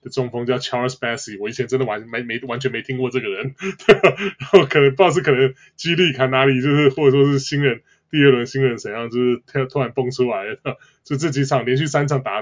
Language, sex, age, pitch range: Chinese, male, 20-39, 125-145 Hz